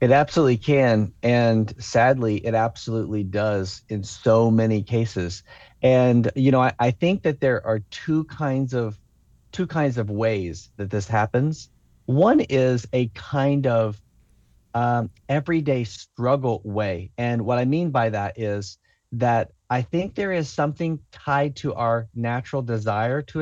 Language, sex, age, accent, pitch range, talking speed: English, male, 40-59, American, 110-140 Hz, 150 wpm